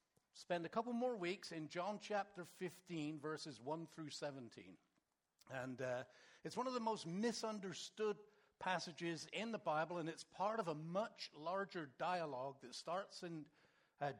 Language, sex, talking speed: English, male, 155 wpm